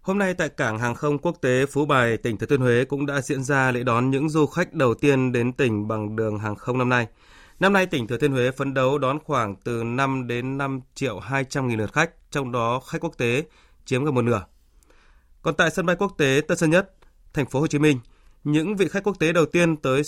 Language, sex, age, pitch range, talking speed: Vietnamese, male, 20-39, 125-155 Hz, 250 wpm